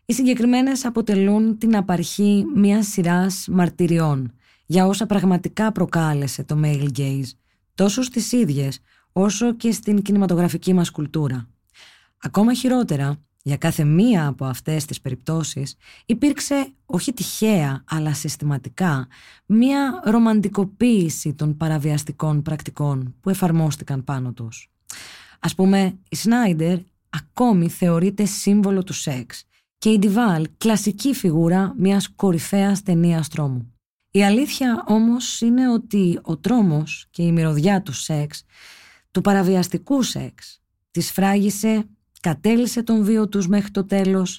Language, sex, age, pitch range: Greek, female, 20-39, 150-210 Hz